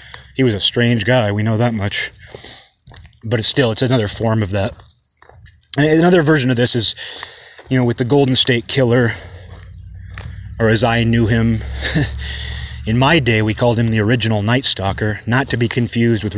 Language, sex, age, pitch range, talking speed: English, male, 30-49, 100-120 Hz, 175 wpm